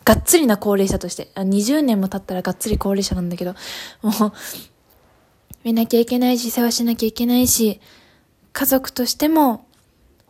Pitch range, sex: 215-255 Hz, female